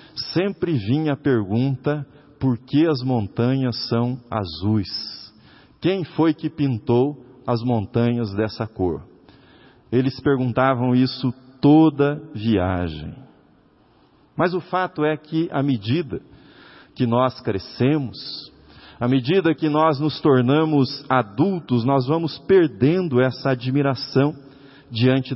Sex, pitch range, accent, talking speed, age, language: male, 120-155 Hz, Brazilian, 110 wpm, 50-69, Portuguese